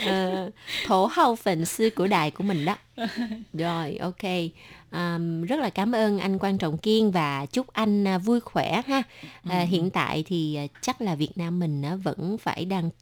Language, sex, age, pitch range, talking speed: Vietnamese, female, 20-39, 170-235 Hz, 180 wpm